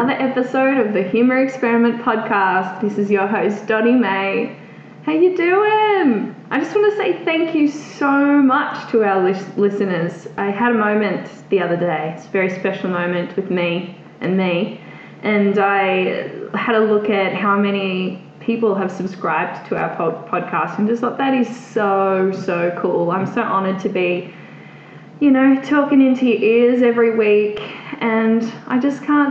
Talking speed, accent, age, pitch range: 170 wpm, Australian, 10-29, 200-255 Hz